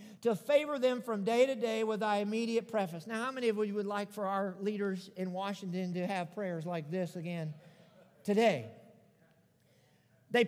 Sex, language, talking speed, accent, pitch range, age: male, English, 180 wpm, American, 195-260 Hz, 50-69